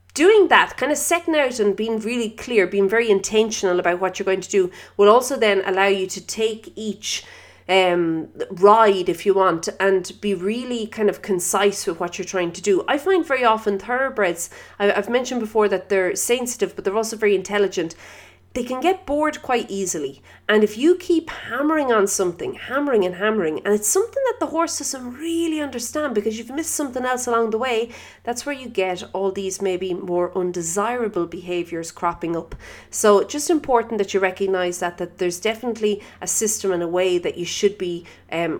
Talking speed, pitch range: 195 wpm, 180-240 Hz